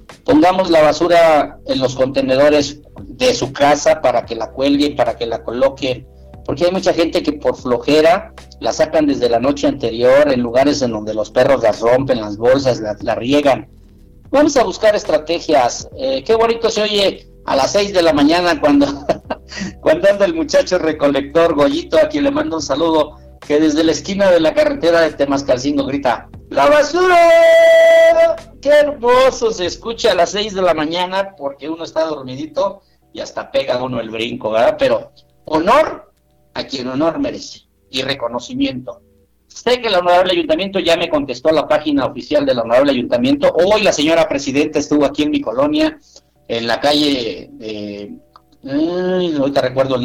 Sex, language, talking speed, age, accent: male, Spanish, 175 wpm, 50-69, Mexican